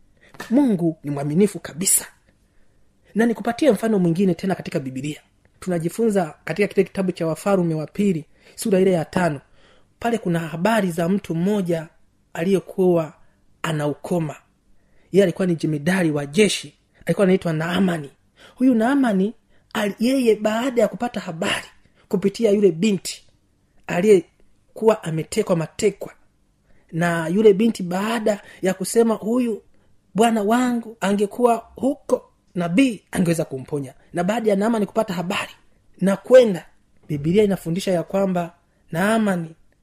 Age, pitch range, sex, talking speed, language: 30-49, 165-215 Hz, male, 125 wpm, Swahili